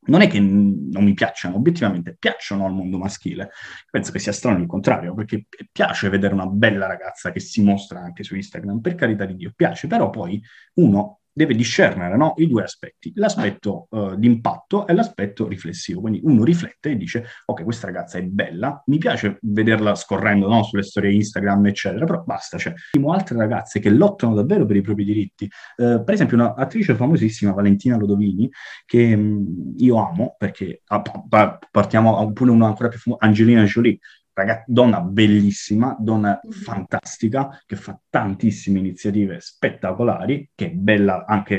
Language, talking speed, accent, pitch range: Italian, 165 wpm, native, 100-120 Hz